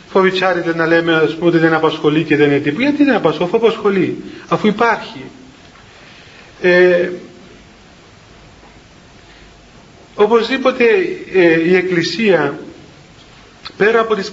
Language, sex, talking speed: Greek, male, 105 wpm